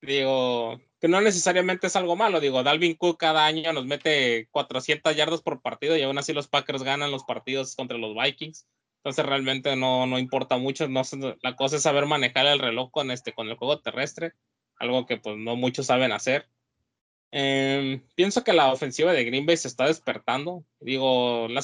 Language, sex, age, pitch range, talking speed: Spanish, male, 20-39, 130-150 Hz, 190 wpm